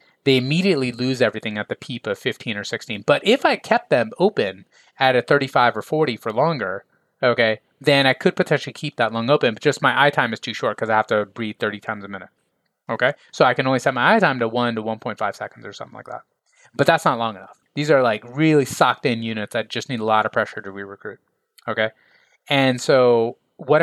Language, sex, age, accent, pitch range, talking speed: English, male, 30-49, American, 110-145 Hz, 235 wpm